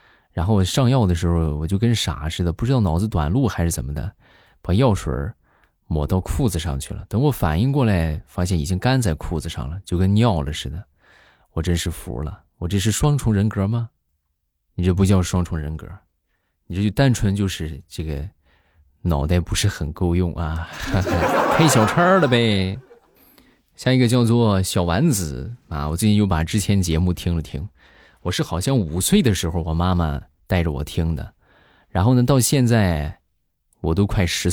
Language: Chinese